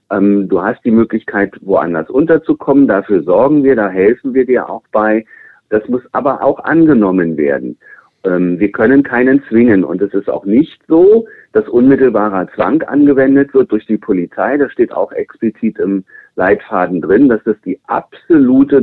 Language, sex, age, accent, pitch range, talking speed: German, male, 50-69, German, 105-170 Hz, 160 wpm